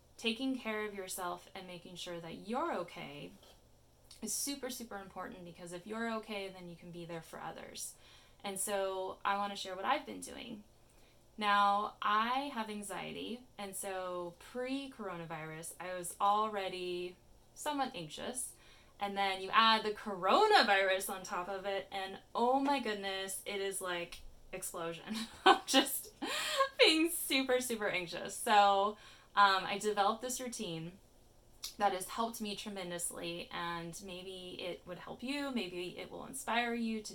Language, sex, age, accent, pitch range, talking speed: English, female, 10-29, American, 180-220 Hz, 150 wpm